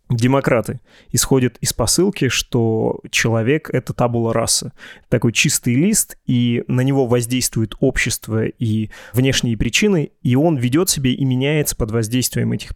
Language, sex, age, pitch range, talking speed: Russian, male, 20-39, 115-140 Hz, 135 wpm